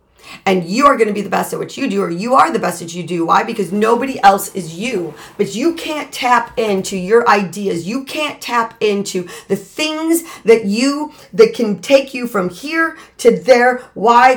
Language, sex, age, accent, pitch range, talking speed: English, female, 40-59, American, 185-250 Hz, 210 wpm